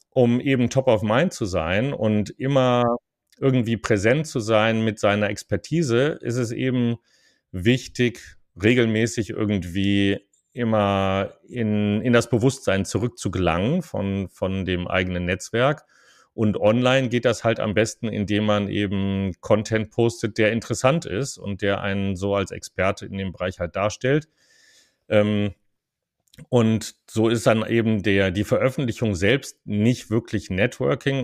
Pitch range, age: 100-120 Hz, 40-59